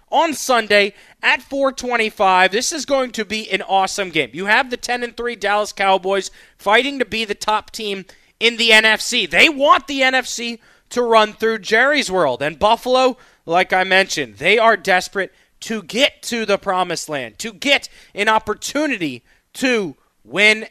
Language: English